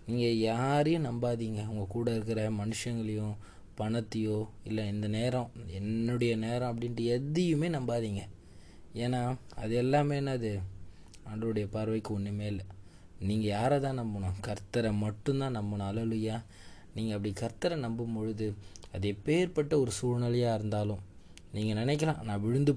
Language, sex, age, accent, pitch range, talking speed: Tamil, male, 20-39, native, 100-120 Hz, 125 wpm